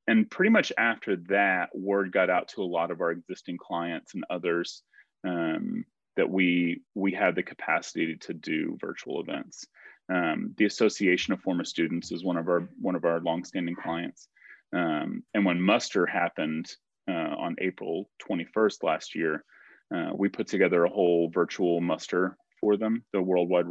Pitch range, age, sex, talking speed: 85-105 Hz, 30-49, male, 170 wpm